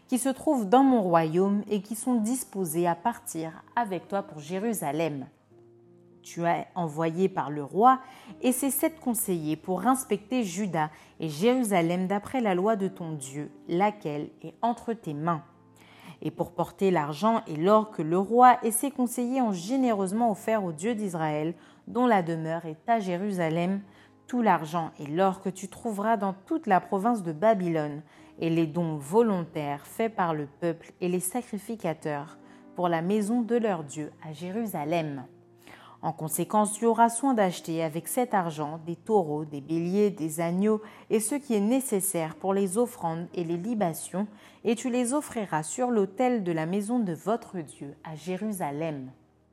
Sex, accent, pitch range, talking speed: female, French, 165-230 Hz, 165 wpm